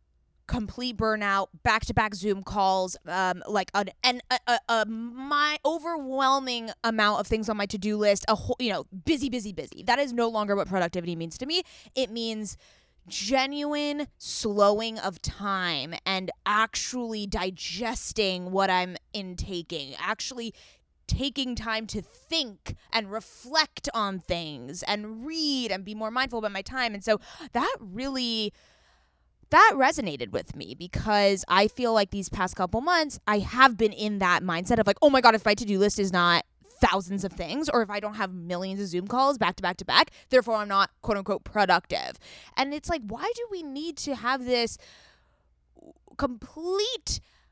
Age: 20-39